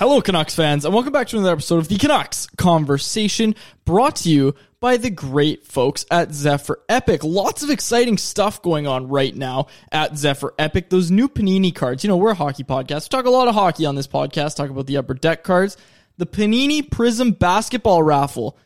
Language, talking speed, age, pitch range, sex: English, 205 wpm, 20-39, 150-215 Hz, male